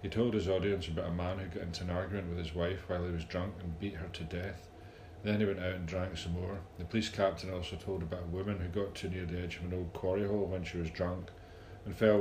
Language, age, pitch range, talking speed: English, 40-59, 90-100 Hz, 280 wpm